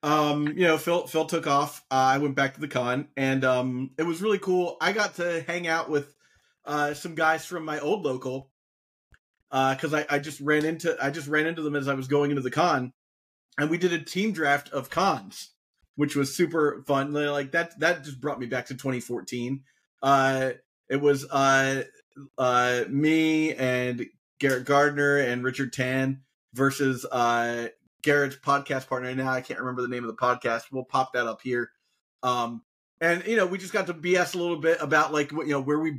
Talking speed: 205 wpm